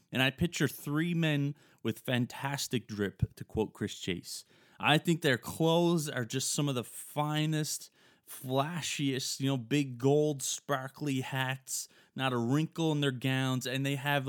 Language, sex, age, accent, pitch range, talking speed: English, male, 20-39, American, 115-150 Hz, 160 wpm